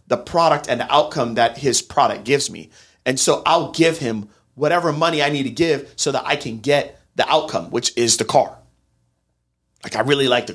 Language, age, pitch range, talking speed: English, 40-59, 105-150 Hz, 210 wpm